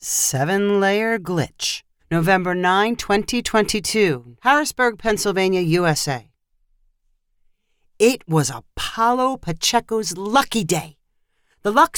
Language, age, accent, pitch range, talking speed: English, 40-59, American, 165-235 Hz, 80 wpm